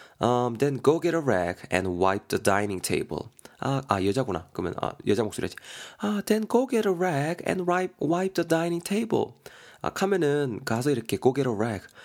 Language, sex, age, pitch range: Korean, male, 20-39, 100-145 Hz